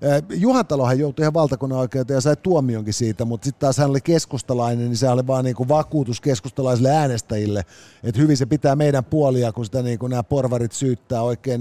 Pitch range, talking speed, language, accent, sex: 120-155 Hz, 185 wpm, Finnish, native, male